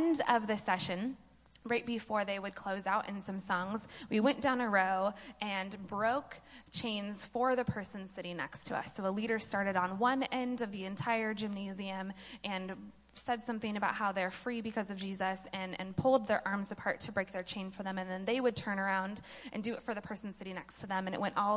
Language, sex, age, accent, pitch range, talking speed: English, female, 20-39, American, 195-235 Hz, 225 wpm